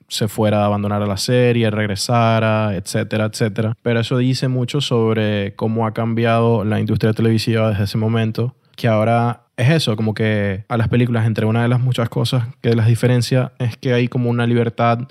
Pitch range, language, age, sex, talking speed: 110-120 Hz, English, 20-39, male, 190 wpm